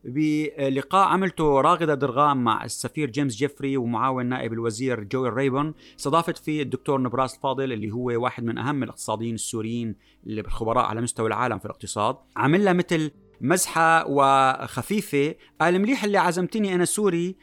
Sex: male